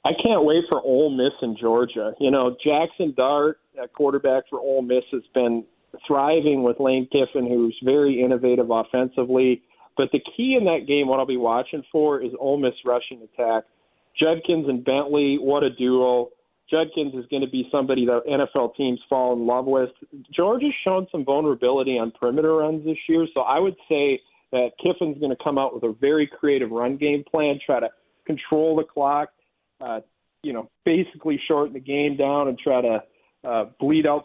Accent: American